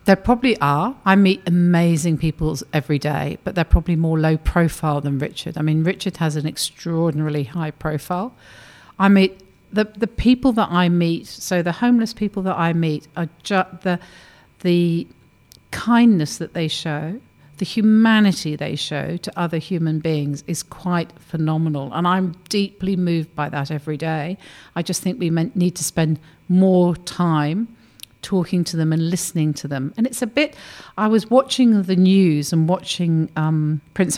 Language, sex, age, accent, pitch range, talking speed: English, female, 50-69, British, 155-195 Hz, 170 wpm